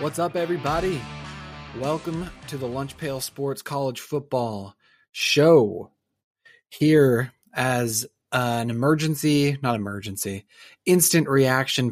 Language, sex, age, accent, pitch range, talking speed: English, male, 30-49, American, 110-140 Hz, 100 wpm